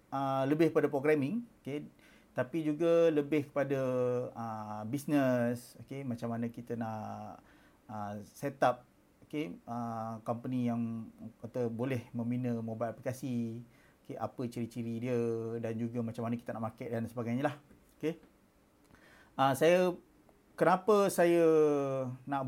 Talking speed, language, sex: 130 wpm, Malay, male